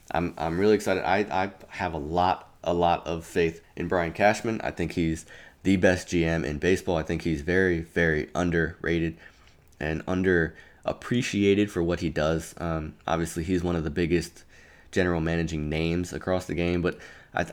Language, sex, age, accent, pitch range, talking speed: English, male, 20-39, American, 80-95 Hz, 175 wpm